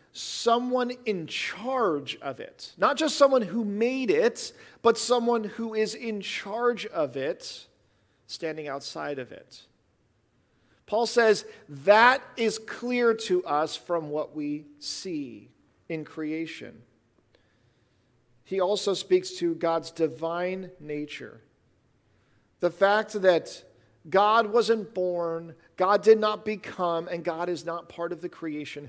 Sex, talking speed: male, 125 wpm